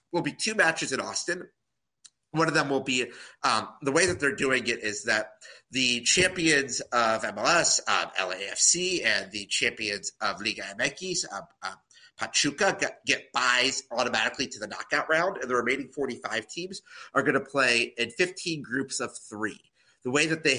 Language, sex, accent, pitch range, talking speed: English, male, American, 110-145 Hz, 180 wpm